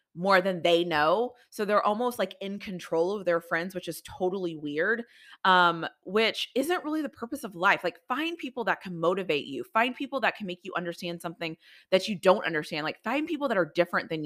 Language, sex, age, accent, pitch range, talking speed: English, female, 30-49, American, 170-225 Hz, 215 wpm